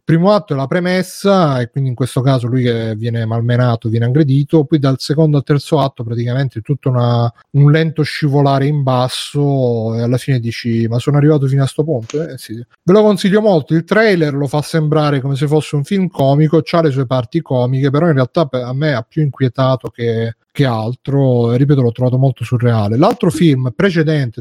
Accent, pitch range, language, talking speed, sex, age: native, 125-155 Hz, Italian, 205 wpm, male, 30-49